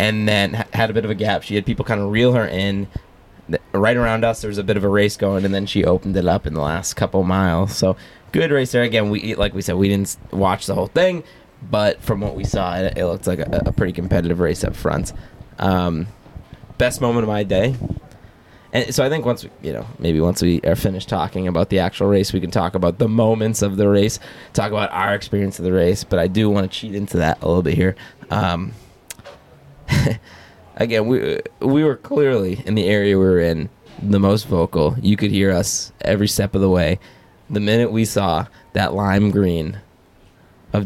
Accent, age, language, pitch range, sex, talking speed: American, 20-39, English, 95-115 Hz, male, 225 wpm